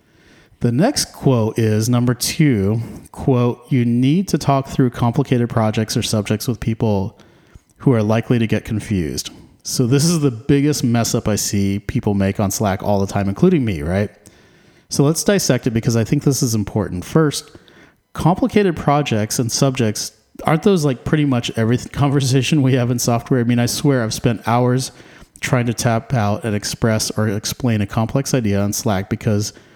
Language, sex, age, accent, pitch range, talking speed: English, male, 40-59, American, 105-135 Hz, 180 wpm